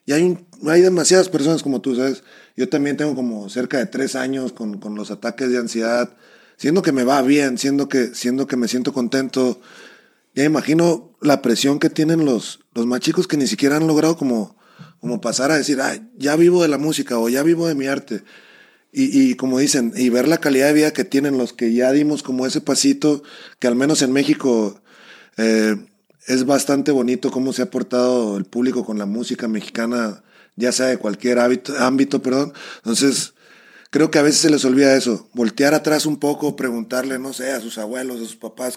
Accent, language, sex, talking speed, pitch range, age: Mexican, Spanish, male, 205 wpm, 125-145 Hz, 30-49